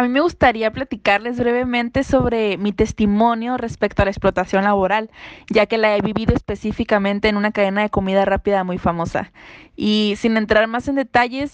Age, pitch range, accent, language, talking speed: 20-39, 205-235 Hz, Mexican, Spanish, 175 wpm